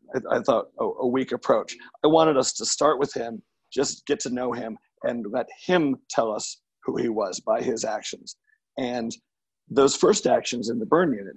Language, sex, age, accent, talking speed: English, male, 40-59, American, 190 wpm